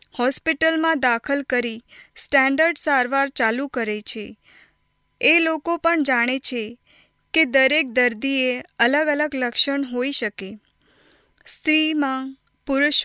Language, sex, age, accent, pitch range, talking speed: Hindi, female, 20-39, native, 245-290 Hz, 85 wpm